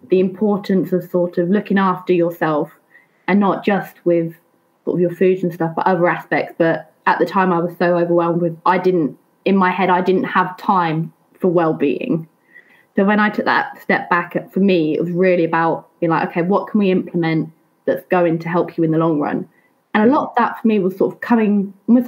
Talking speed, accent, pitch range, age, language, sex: 230 wpm, British, 165-190 Hz, 20-39, English, female